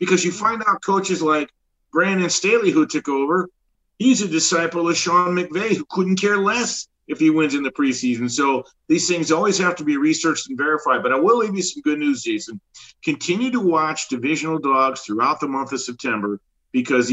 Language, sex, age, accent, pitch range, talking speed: English, male, 50-69, American, 135-180 Hz, 200 wpm